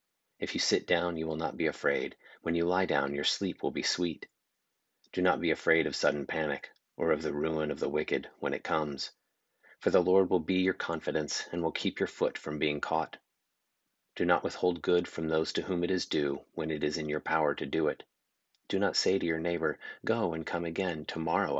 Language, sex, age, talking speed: English, male, 30-49, 225 wpm